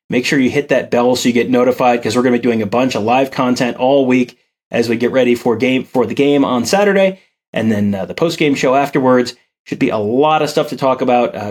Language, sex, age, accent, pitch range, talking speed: English, male, 30-49, American, 120-150 Hz, 265 wpm